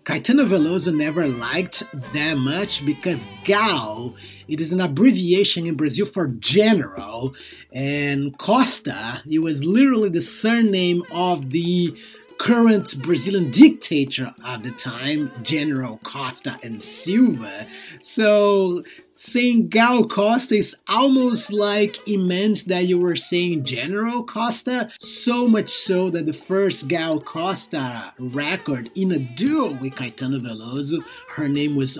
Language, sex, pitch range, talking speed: English, male, 135-205 Hz, 130 wpm